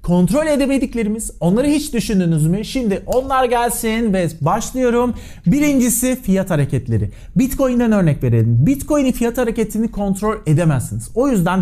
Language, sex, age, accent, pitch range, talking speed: Turkish, male, 40-59, native, 165-235 Hz, 125 wpm